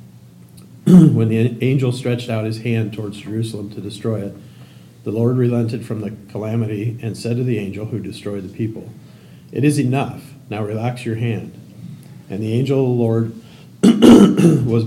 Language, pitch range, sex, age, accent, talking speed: English, 105-120 Hz, male, 40-59, American, 165 wpm